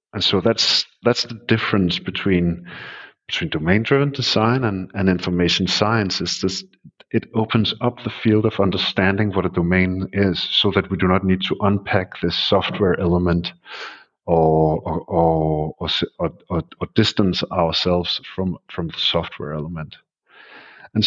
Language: English